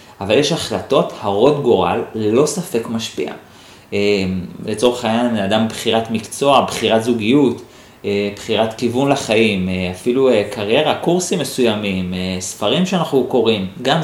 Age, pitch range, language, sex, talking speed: 30-49, 110-145 Hz, Hebrew, male, 110 wpm